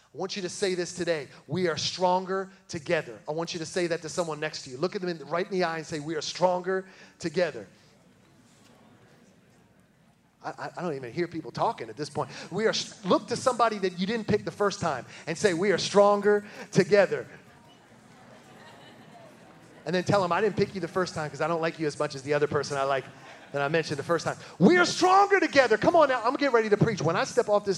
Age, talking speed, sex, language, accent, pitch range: 30-49, 240 wpm, male, English, American, 140-190 Hz